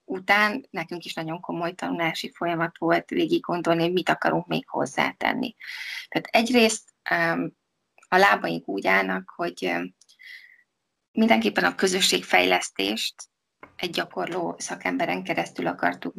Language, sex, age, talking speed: Hungarian, female, 20-39, 110 wpm